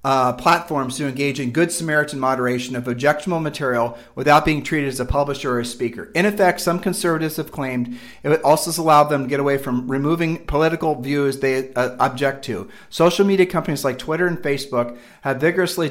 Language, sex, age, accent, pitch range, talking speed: English, male, 40-59, American, 130-160 Hz, 190 wpm